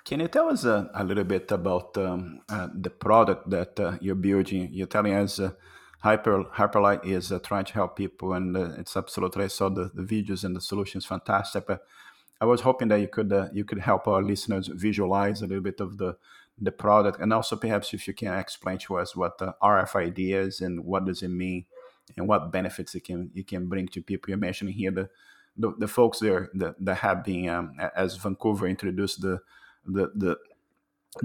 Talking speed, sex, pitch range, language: 210 wpm, male, 95-105 Hz, Portuguese